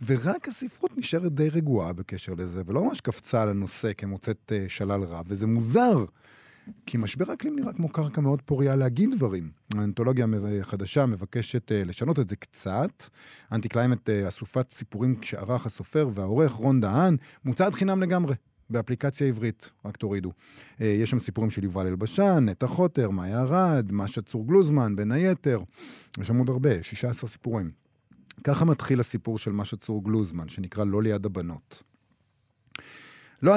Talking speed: 145 wpm